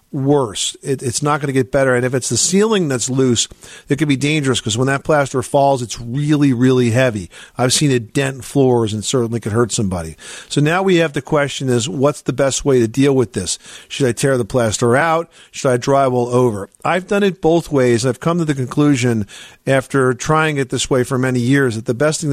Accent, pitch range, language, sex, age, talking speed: American, 125-150 Hz, English, male, 50-69, 225 wpm